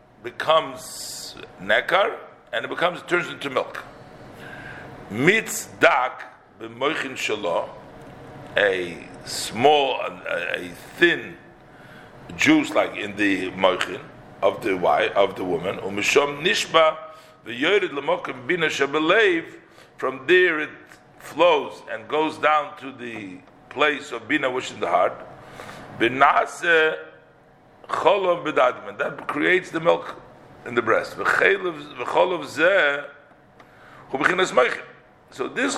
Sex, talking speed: male, 110 wpm